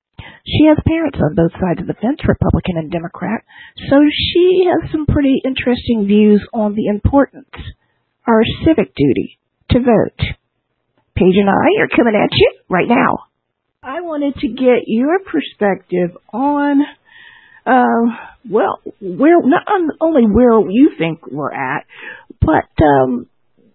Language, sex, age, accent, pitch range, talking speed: English, female, 50-69, American, 170-285 Hz, 140 wpm